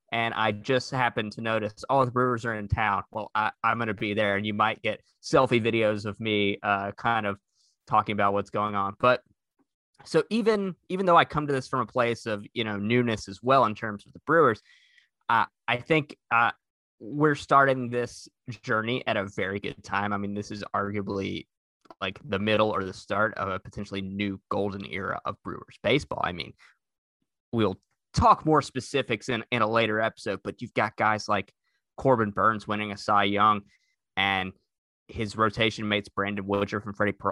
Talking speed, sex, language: 195 wpm, male, English